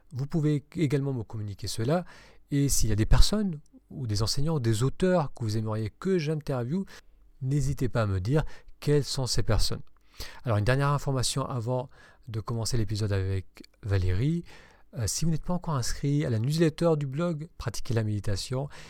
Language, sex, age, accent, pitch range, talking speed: French, male, 40-59, French, 110-145 Hz, 180 wpm